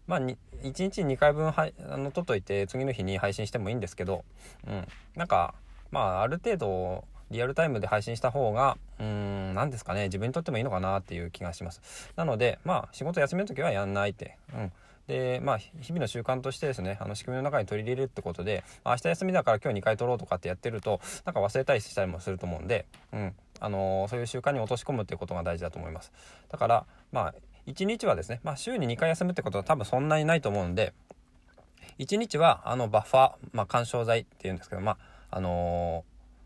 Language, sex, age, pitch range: Japanese, male, 20-39, 95-135 Hz